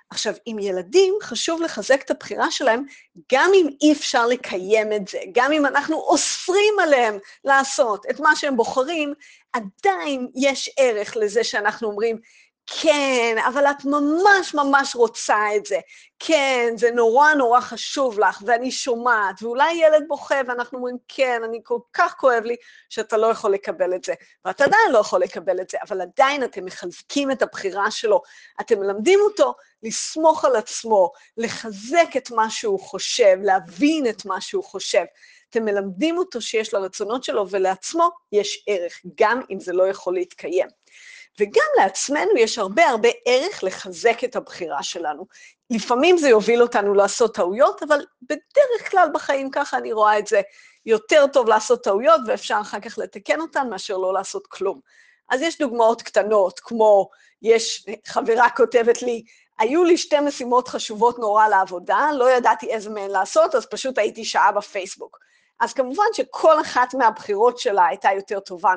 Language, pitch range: Hebrew, 210-310 Hz